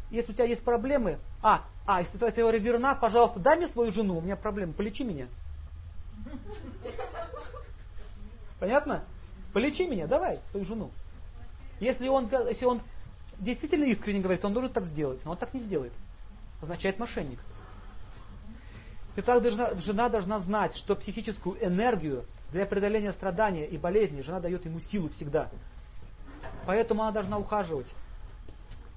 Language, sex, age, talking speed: Russian, male, 40-59, 140 wpm